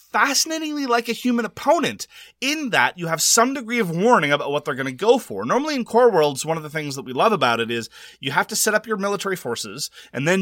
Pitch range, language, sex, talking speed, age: 130-195 Hz, English, male, 255 wpm, 30-49